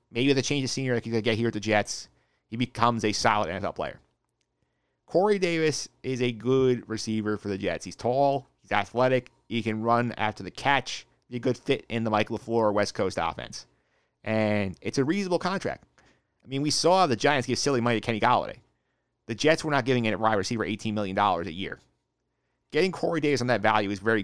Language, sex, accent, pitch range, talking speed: English, male, American, 105-125 Hz, 220 wpm